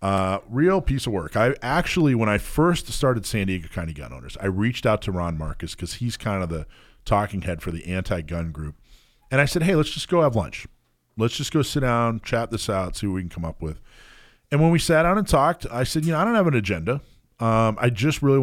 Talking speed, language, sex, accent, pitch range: 250 wpm, English, male, American, 90-130 Hz